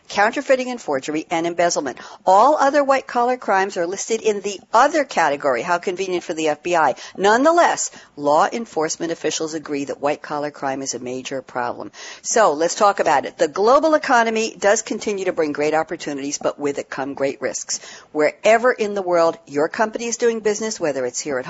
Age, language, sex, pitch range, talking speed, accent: 60-79, English, female, 165-240 Hz, 180 wpm, American